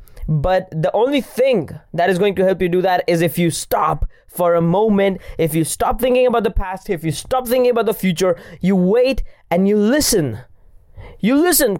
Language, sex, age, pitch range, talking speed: English, male, 20-39, 175-255 Hz, 205 wpm